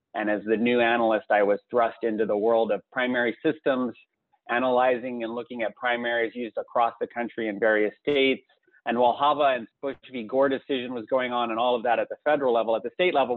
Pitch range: 115-145 Hz